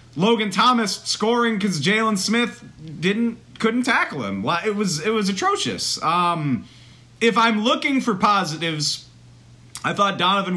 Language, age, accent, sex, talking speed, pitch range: English, 30-49, American, male, 140 wpm, 120-175 Hz